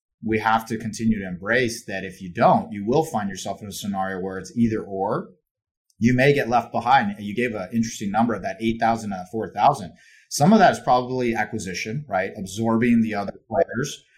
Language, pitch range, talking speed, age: English, 105-135 Hz, 205 wpm, 30-49